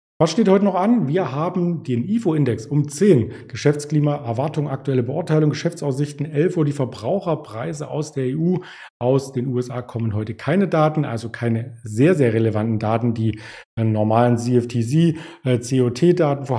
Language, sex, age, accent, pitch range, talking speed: German, male, 40-59, German, 115-155 Hz, 150 wpm